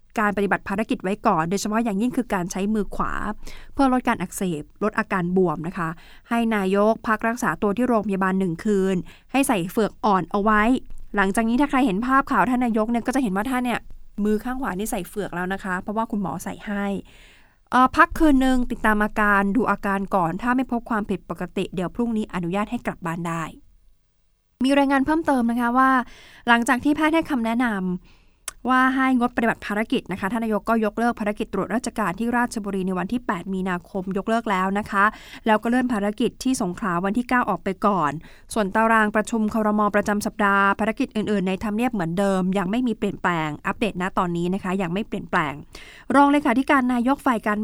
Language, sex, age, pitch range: Thai, female, 20-39, 195-240 Hz